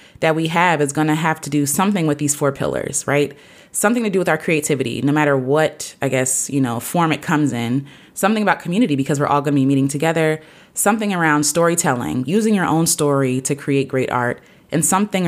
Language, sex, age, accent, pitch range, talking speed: English, female, 20-39, American, 140-170 Hz, 220 wpm